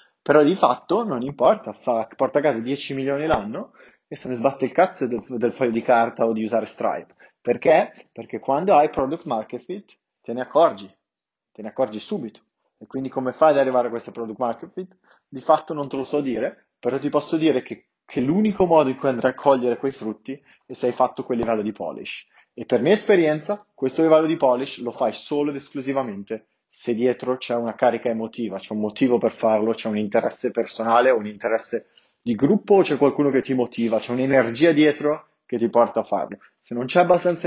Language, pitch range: Italian, 115-145 Hz